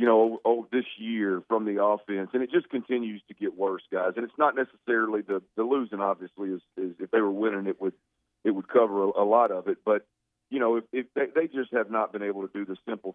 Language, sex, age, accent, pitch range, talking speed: English, male, 40-59, American, 100-115 Hz, 250 wpm